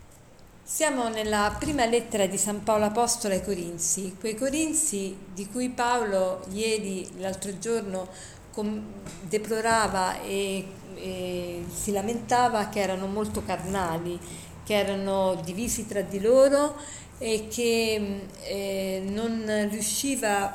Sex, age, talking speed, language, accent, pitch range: female, 50-69, 110 wpm, Italian, native, 190-235 Hz